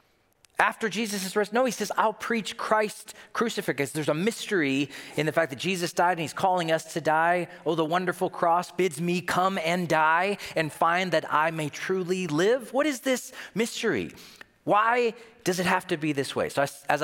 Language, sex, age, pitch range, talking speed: English, male, 40-59, 135-185 Hz, 195 wpm